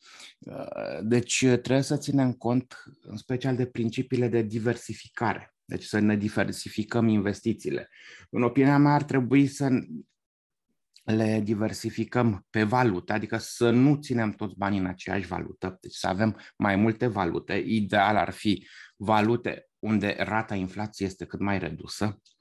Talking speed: 140 wpm